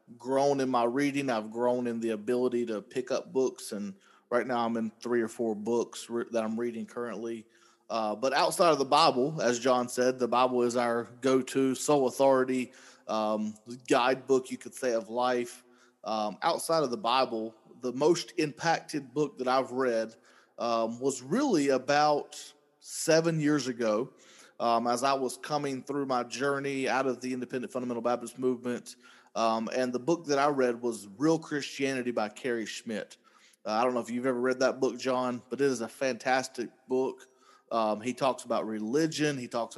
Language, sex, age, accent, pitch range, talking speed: English, male, 30-49, American, 115-135 Hz, 185 wpm